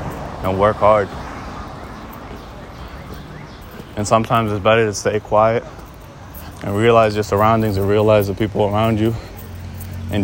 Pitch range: 95-110 Hz